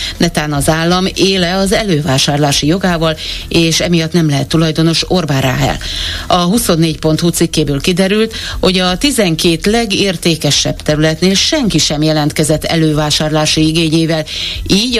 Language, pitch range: Hungarian, 145-180 Hz